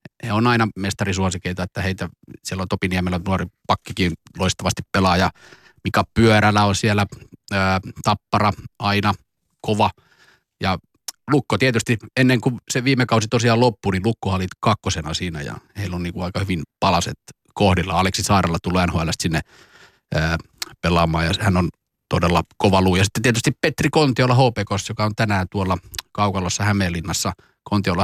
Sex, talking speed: male, 150 wpm